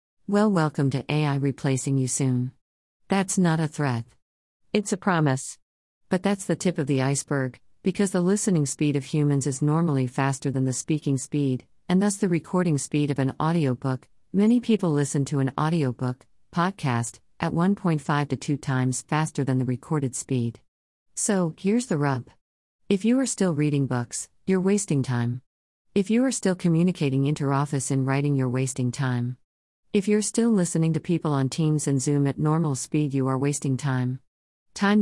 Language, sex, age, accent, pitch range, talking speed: English, female, 50-69, American, 135-175 Hz, 175 wpm